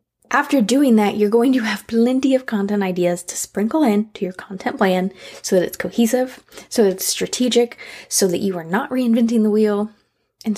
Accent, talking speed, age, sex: American, 195 wpm, 20-39, female